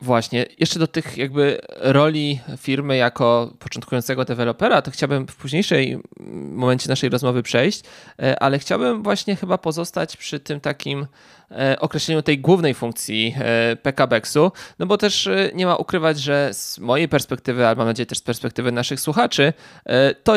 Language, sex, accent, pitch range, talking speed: Polish, male, native, 120-145 Hz, 145 wpm